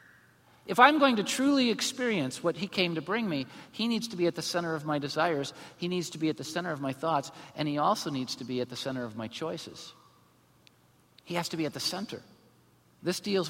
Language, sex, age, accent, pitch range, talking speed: English, male, 50-69, American, 135-175 Hz, 235 wpm